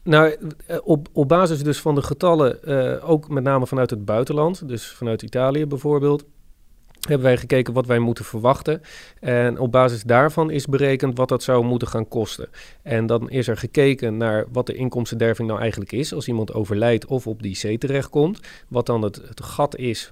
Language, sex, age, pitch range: Dutch, male, 40-59, 115-145 Hz